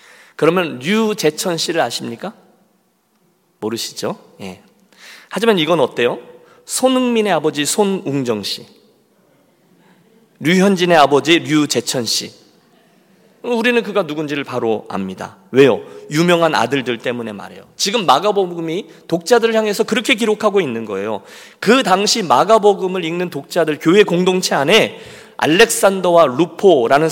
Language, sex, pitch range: Korean, male, 150-220 Hz